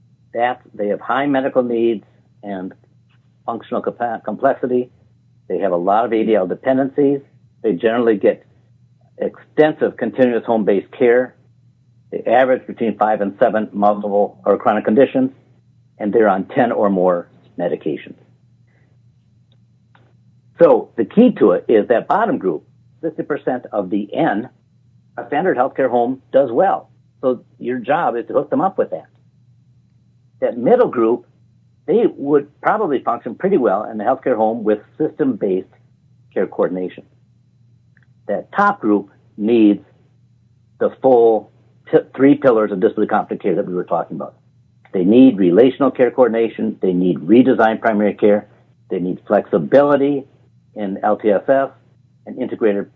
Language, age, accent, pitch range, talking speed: English, 60-79, American, 115-130 Hz, 135 wpm